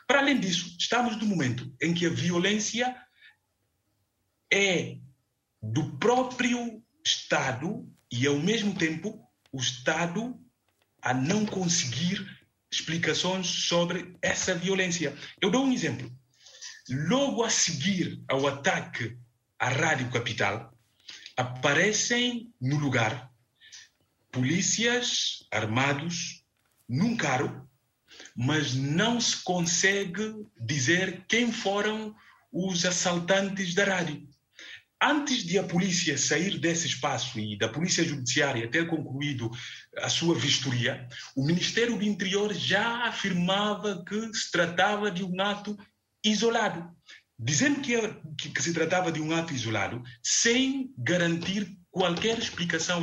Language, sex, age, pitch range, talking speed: Portuguese, male, 50-69, 140-210 Hz, 110 wpm